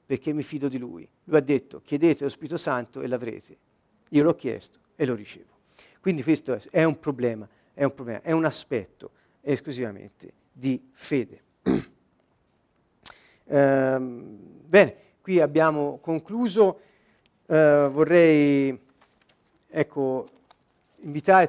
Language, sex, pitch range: Italian, male, 130-160 Hz